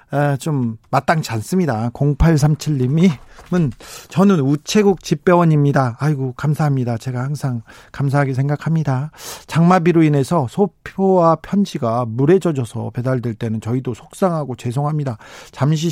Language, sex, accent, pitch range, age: Korean, male, native, 130-185 Hz, 40-59